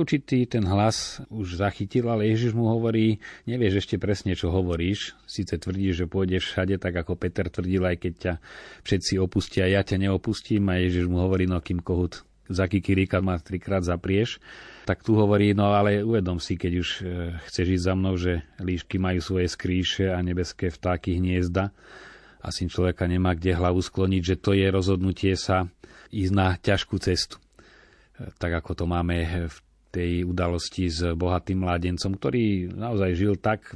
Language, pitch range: Slovak, 90-100 Hz